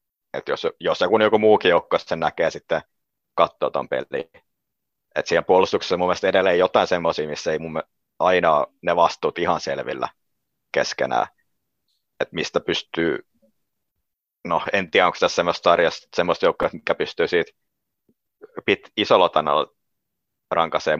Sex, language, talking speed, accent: male, Finnish, 125 wpm, native